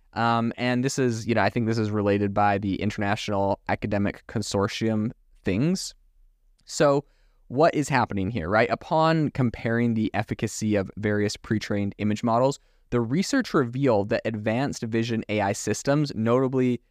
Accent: American